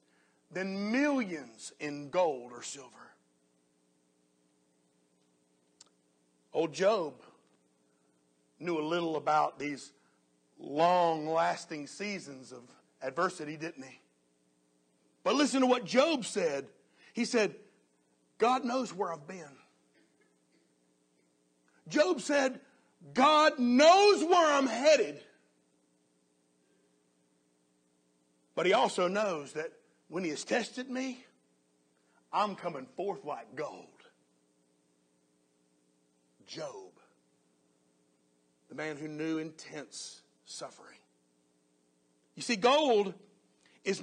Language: English